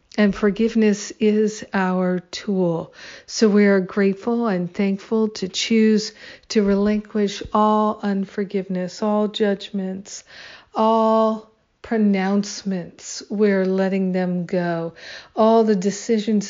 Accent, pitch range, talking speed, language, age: American, 190-220 Hz, 100 wpm, English, 50-69